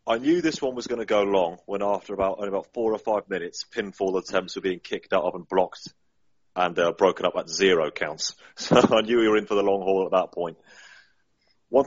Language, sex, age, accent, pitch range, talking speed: English, male, 30-49, British, 95-130 Hz, 245 wpm